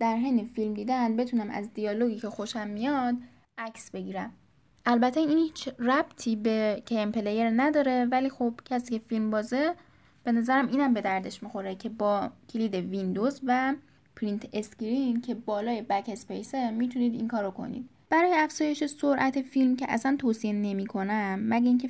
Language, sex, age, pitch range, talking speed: Persian, female, 10-29, 210-255 Hz, 155 wpm